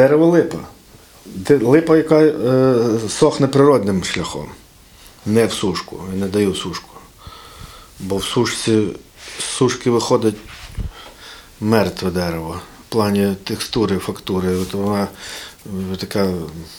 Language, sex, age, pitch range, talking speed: Ukrainian, male, 40-59, 100-130 Hz, 105 wpm